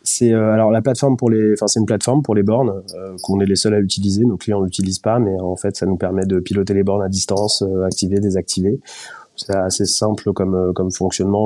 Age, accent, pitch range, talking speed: 20-39, French, 95-115 Hz, 240 wpm